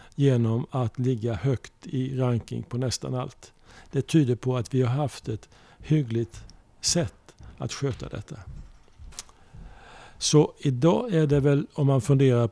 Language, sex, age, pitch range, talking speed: English, male, 50-69, 115-140 Hz, 145 wpm